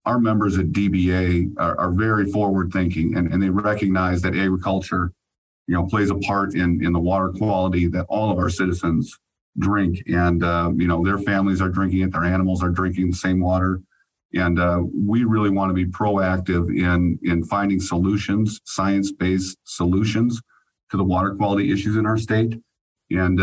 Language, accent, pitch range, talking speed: English, American, 90-105 Hz, 175 wpm